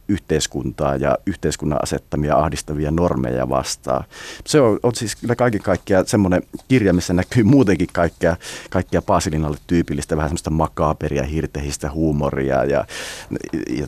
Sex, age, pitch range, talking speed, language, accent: male, 30-49, 75-105 Hz, 125 wpm, Finnish, native